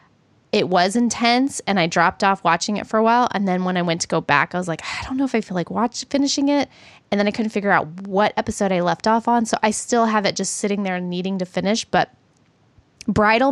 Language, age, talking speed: English, 20-39, 260 wpm